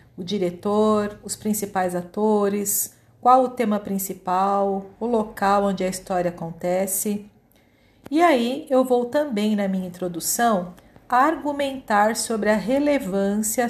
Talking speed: 120 wpm